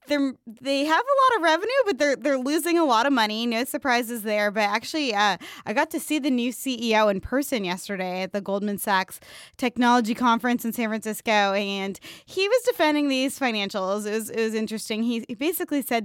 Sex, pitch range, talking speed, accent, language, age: female, 195-250 Hz, 205 wpm, American, English, 20-39